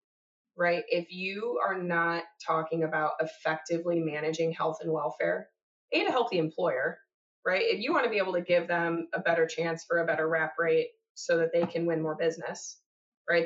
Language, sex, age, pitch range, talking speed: English, female, 20-39, 165-215 Hz, 185 wpm